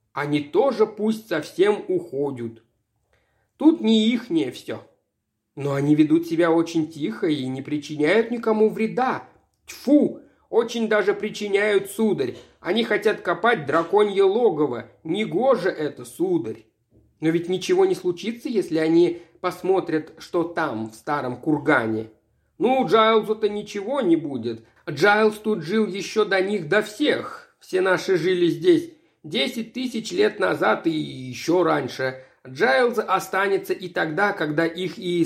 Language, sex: Russian, male